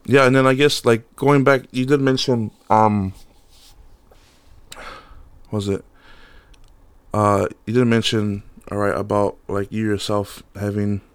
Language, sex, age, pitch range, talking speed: English, male, 20-39, 100-110 Hz, 140 wpm